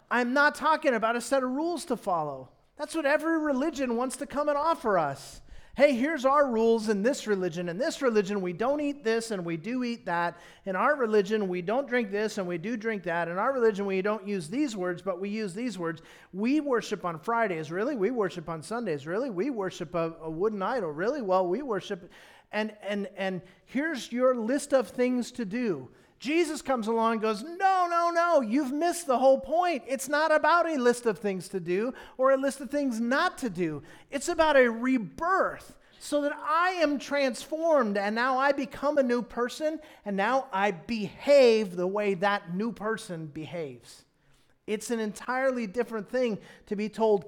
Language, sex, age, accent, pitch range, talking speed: English, male, 40-59, American, 190-270 Hz, 200 wpm